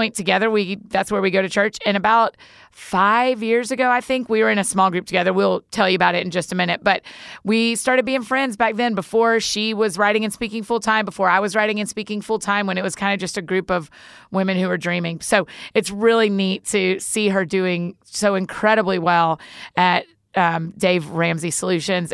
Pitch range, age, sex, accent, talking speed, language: 180-220 Hz, 30-49, female, American, 220 wpm, English